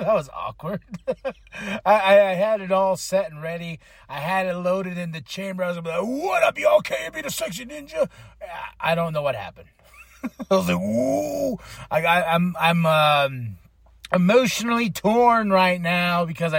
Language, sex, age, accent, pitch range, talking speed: English, male, 30-49, American, 165-205 Hz, 195 wpm